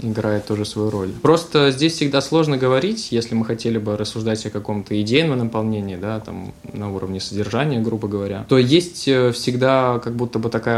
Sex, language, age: male, Russian, 20-39